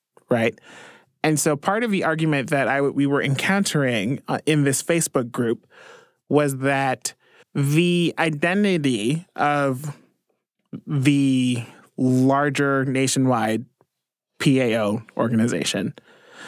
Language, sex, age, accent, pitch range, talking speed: English, male, 20-39, American, 130-160 Hz, 95 wpm